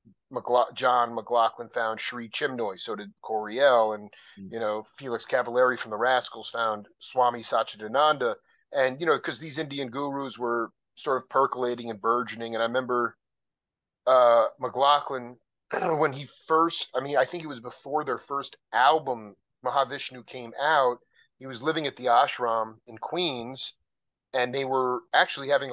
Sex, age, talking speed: male, 40-59, 155 wpm